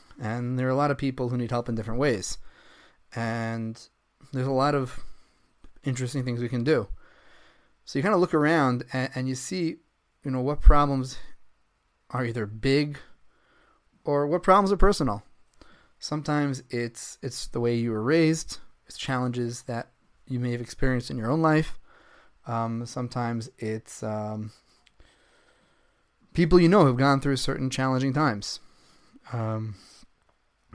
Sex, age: male, 30-49